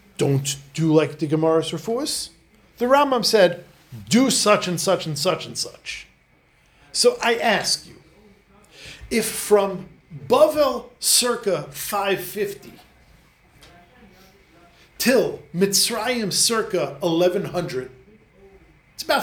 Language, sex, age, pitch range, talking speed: English, male, 40-59, 175-220 Hz, 100 wpm